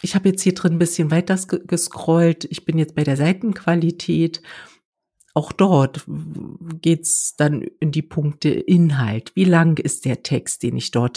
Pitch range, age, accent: 140-170 Hz, 50-69, German